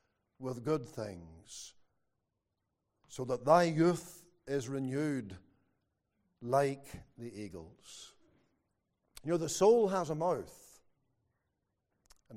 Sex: male